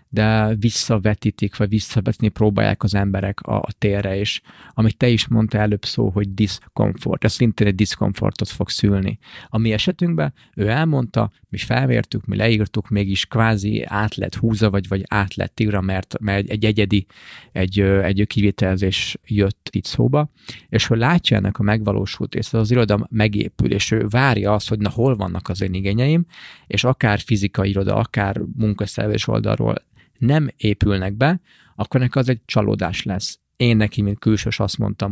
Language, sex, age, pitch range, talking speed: Hungarian, male, 30-49, 100-115 Hz, 165 wpm